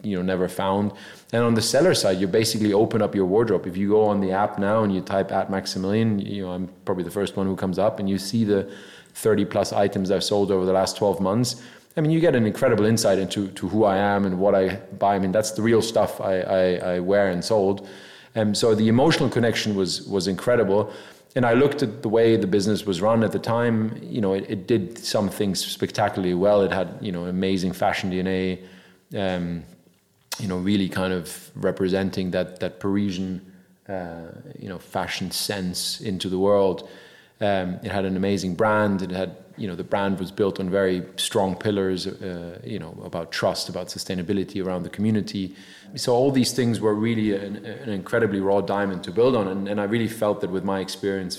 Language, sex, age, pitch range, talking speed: English, male, 30-49, 95-105 Hz, 215 wpm